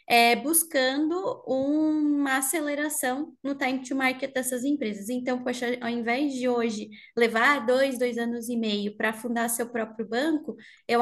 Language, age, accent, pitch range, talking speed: Portuguese, 20-39, Brazilian, 230-275 Hz, 140 wpm